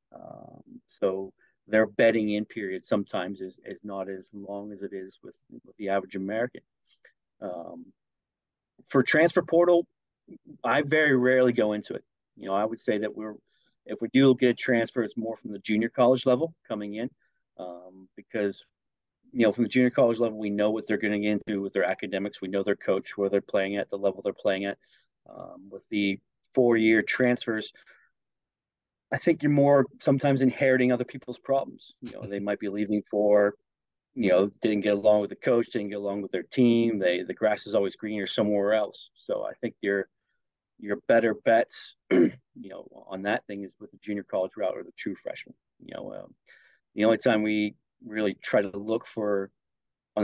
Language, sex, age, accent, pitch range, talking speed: English, male, 40-59, American, 100-120 Hz, 195 wpm